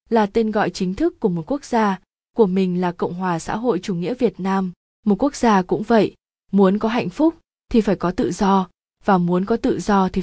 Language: Vietnamese